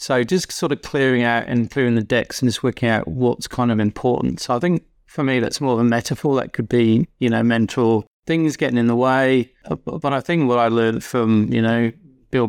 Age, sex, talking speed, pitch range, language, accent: 30-49, male, 235 wpm, 115-130 Hz, English, British